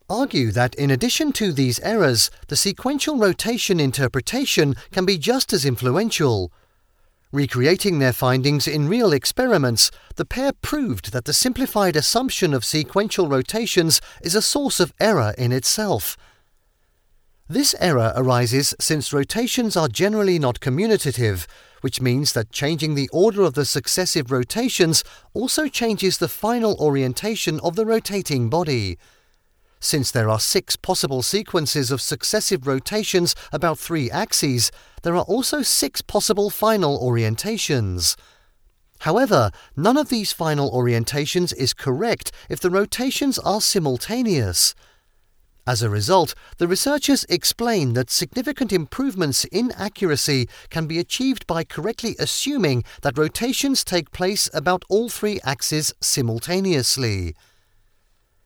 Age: 40-59